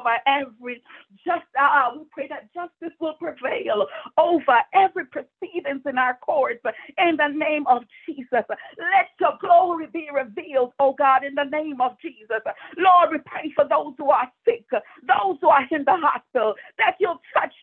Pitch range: 265-345 Hz